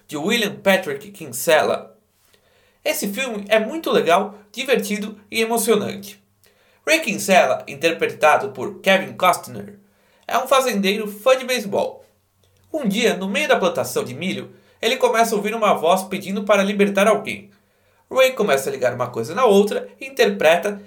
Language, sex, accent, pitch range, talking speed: Portuguese, male, Brazilian, 190-235 Hz, 150 wpm